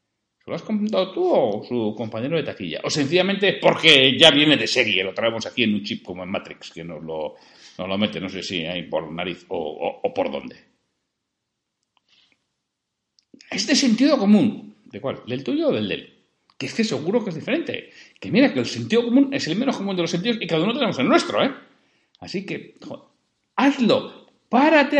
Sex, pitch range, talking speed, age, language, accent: male, 160-225 Hz, 195 wpm, 60-79, Spanish, Spanish